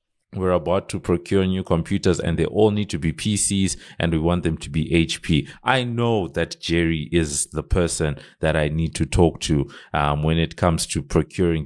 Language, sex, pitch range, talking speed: English, male, 80-100 Hz, 200 wpm